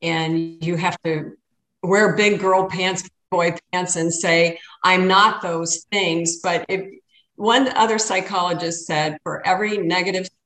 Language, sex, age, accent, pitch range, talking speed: English, female, 50-69, American, 170-215 Hz, 145 wpm